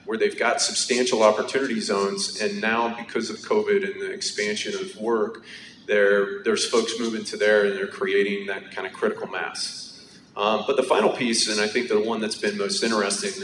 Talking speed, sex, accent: 195 wpm, male, American